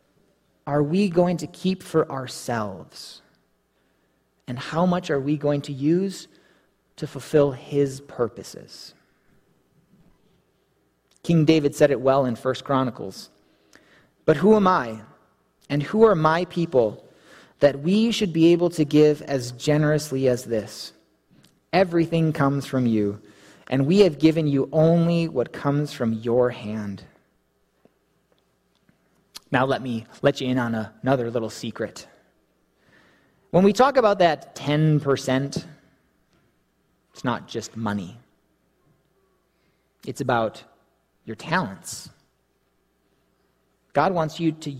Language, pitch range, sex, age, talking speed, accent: English, 130-170 Hz, male, 30-49, 120 wpm, American